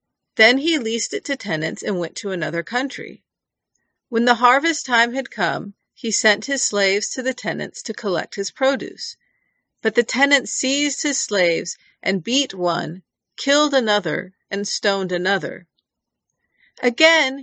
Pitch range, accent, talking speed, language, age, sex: 195-265 Hz, American, 150 wpm, English, 40-59, female